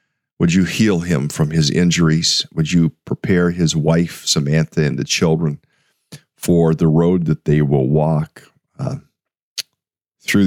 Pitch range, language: 80-95 Hz, English